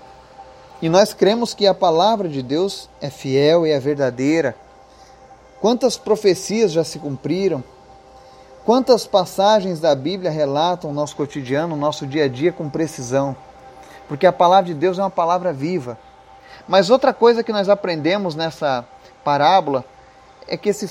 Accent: Brazilian